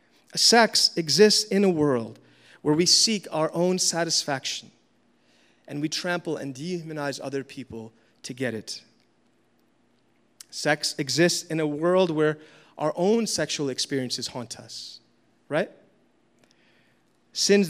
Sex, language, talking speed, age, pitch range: male, English, 120 wpm, 30-49, 135-165 Hz